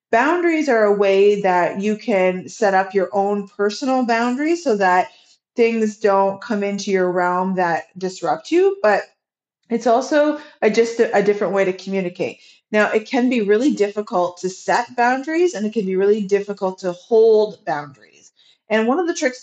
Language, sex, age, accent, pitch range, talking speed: English, female, 30-49, American, 190-230 Hz, 175 wpm